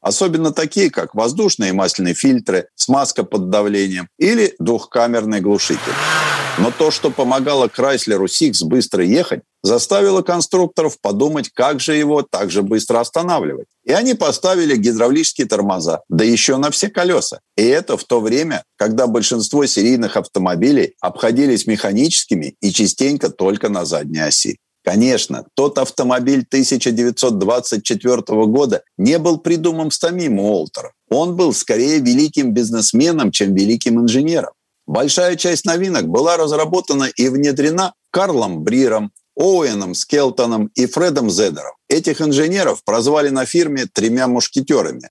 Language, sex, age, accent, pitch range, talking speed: Russian, male, 50-69, native, 115-170 Hz, 130 wpm